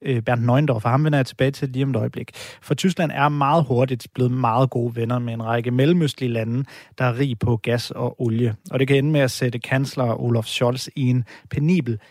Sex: male